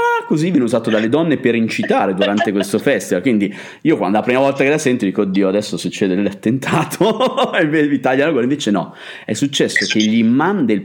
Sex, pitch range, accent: male, 105-145 Hz, native